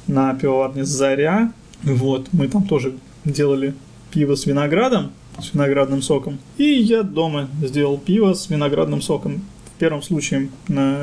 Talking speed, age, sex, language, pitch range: 140 wpm, 20-39, male, Russian, 135-175 Hz